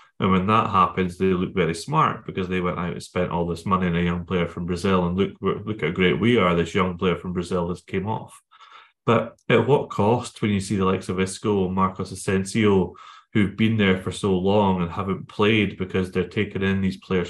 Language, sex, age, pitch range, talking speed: English, male, 30-49, 90-115 Hz, 230 wpm